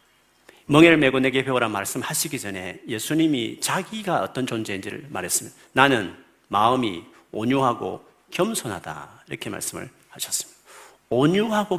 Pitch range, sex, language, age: 115-155 Hz, male, Korean, 50-69